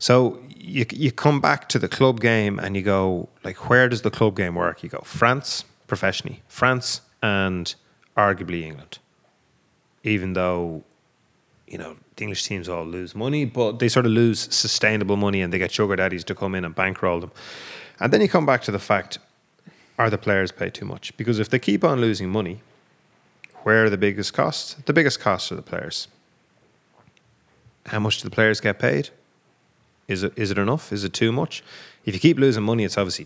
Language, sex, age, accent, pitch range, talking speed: English, male, 30-49, Irish, 95-115 Hz, 200 wpm